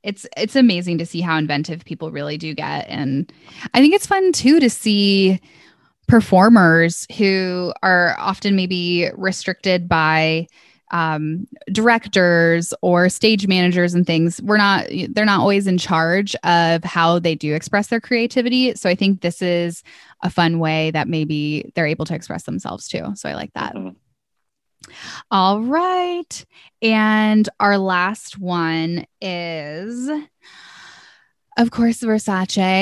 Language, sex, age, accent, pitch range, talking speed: English, female, 10-29, American, 175-230 Hz, 140 wpm